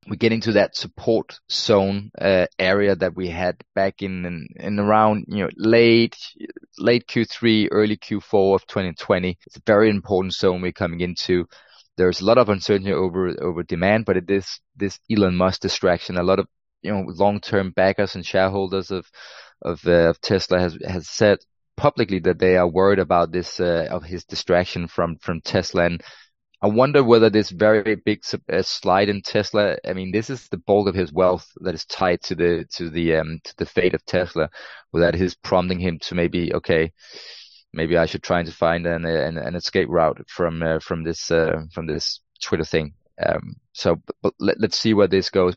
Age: 20-39